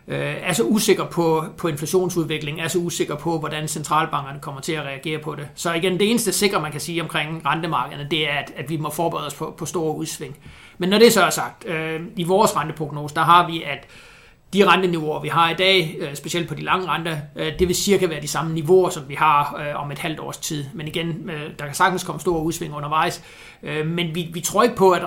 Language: Danish